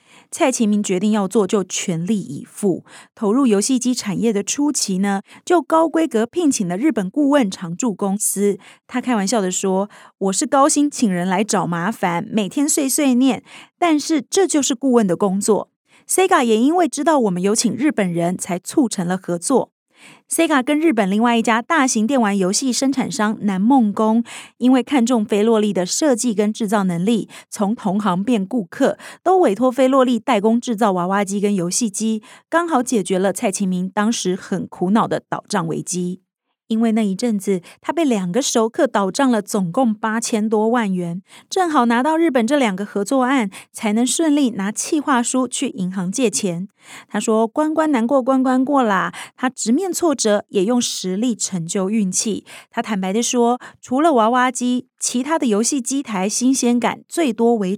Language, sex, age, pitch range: Chinese, female, 30-49, 200-260 Hz